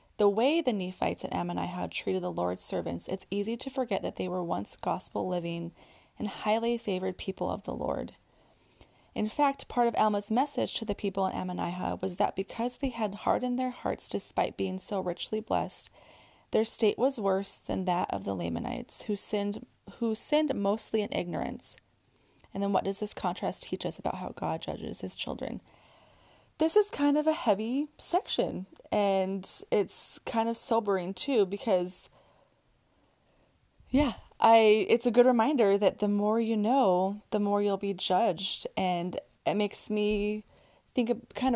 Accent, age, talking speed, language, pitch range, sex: American, 20-39, 170 wpm, English, 190-235 Hz, female